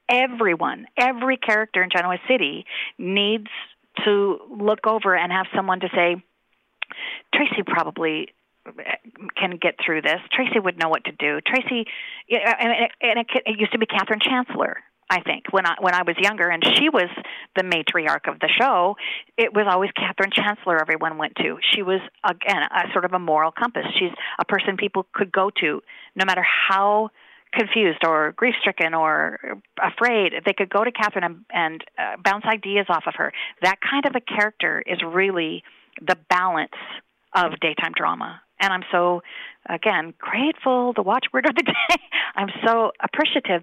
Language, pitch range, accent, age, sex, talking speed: English, 175-220 Hz, American, 40-59, female, 165 wpm